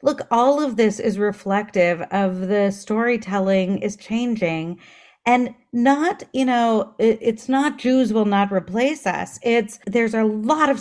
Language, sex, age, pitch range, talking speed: English, female, 40-59, 190-245 Hz, 150 wpm